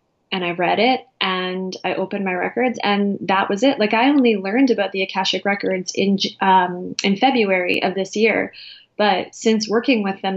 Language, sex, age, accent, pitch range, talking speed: English, female, 20-39, American, 185-210 Hz, 190 wpm